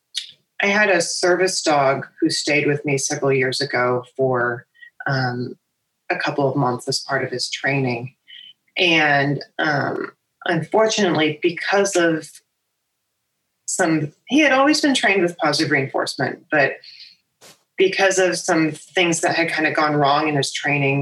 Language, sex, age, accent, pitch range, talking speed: English, female, 30-49, American, 140-190 Hz, 145 wpm